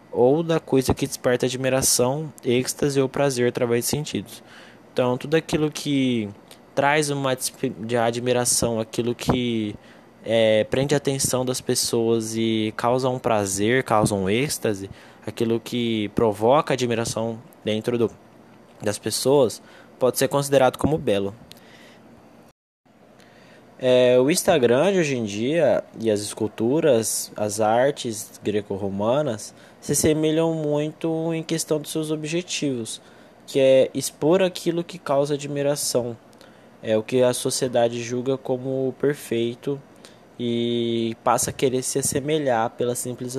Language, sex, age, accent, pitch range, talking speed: Portuguese, male, 10-29, Brazilian, 110-140 Hz, 125 wpm